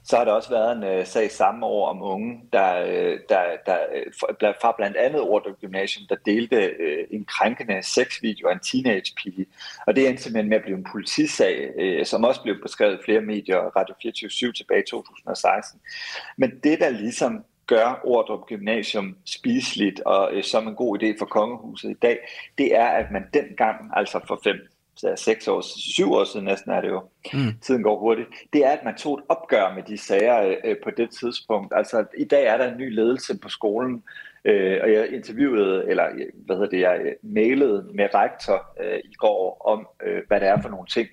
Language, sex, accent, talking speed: Danish, male, native, 205 wpm